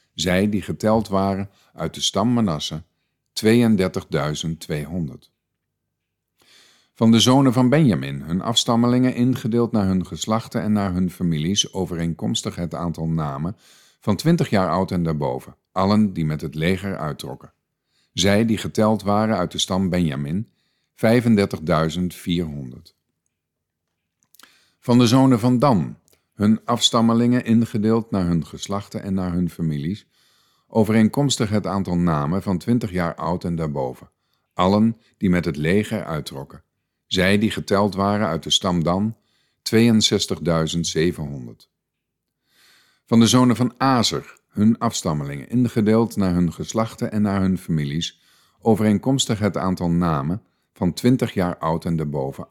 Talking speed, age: 130 wpm, 50-69